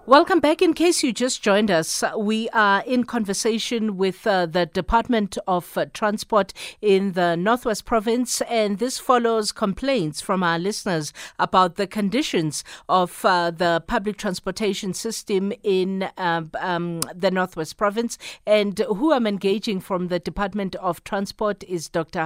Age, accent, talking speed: 50-69, South African, 150 wpm